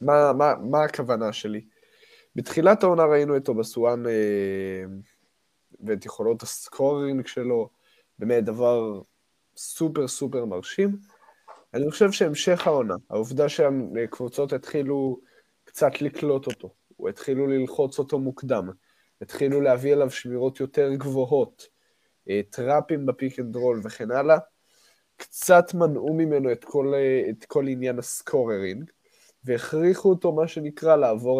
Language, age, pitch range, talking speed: Hebrew, 20-39, 120-160 Hz, 115 wpm